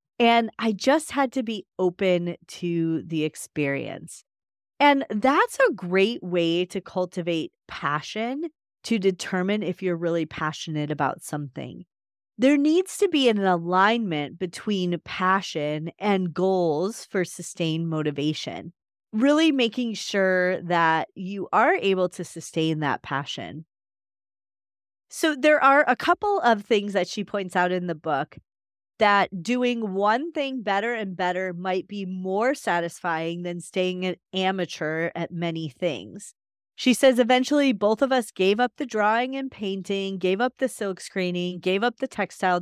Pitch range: 170-230 Hz